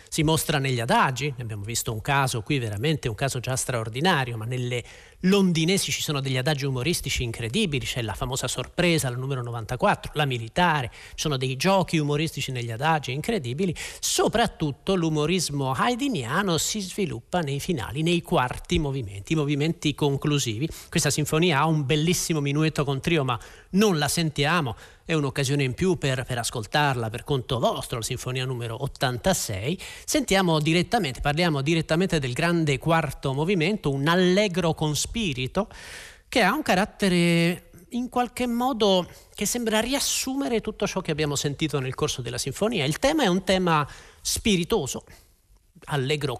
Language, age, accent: Italian, 40-59, native